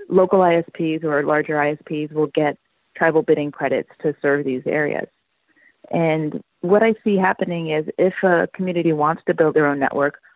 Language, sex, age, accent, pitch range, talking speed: English, female, 30-49, American, 145-175 Hz, 170 wpm